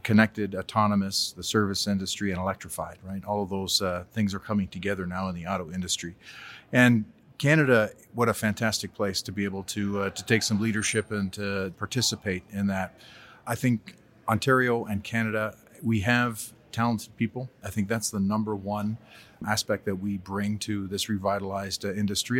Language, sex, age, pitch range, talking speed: English, male, 30-49, 100-115 Hz, 170 wpm